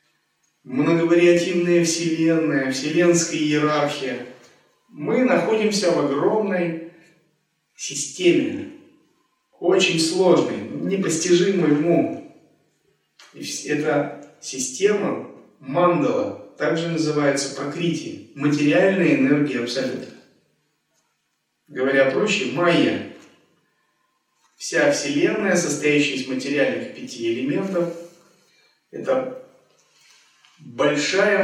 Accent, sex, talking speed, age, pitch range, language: native, male, 65 wpm, 30-49, 145-175 Hz, Russian